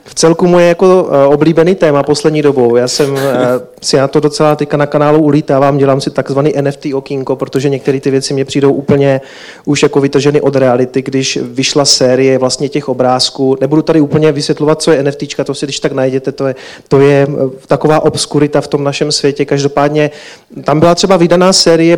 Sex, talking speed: male, 185 wpm